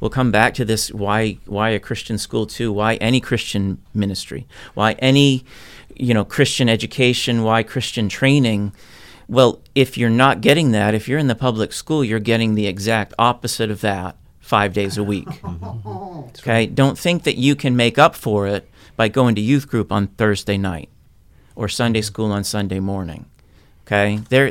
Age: 40-59